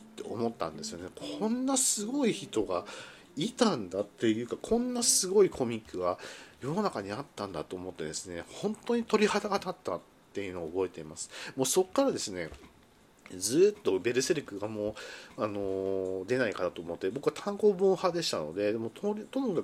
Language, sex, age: Japanese, male, 40-59